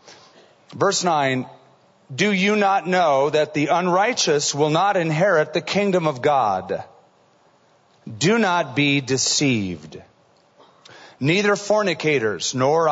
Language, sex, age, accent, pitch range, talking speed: English, male, 40-59, American, 135-185 Hz, 105 wpm